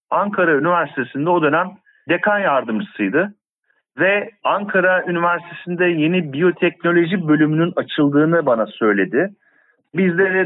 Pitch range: 150-220 Hz